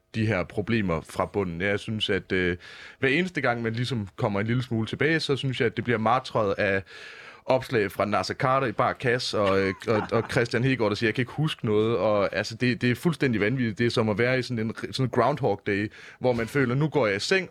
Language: Danish